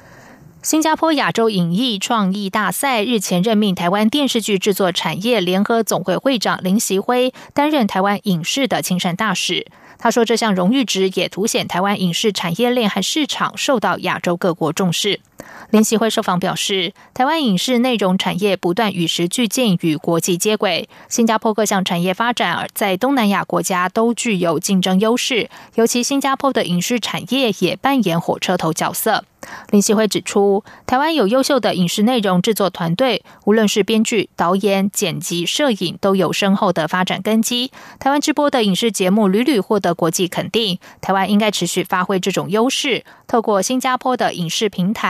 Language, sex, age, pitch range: German, female, 20-39, 180-230 Hz